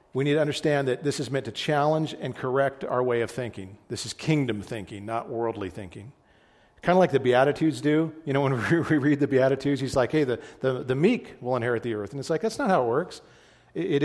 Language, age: English, 40-59